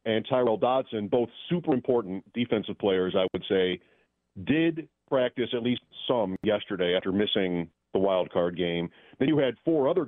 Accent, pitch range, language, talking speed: American, 100-125 Hz, English, 165 wpm